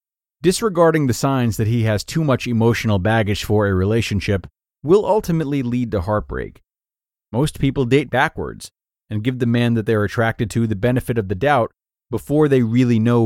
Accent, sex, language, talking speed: American, male, English, 180 wpm